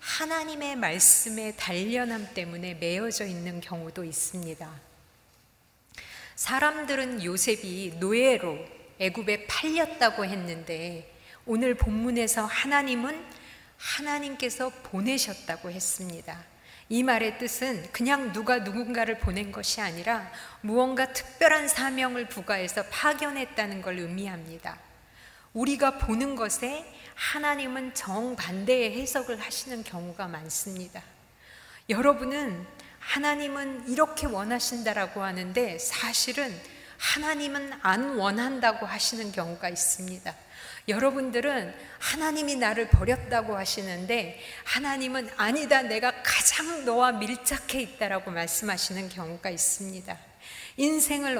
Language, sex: Korean, female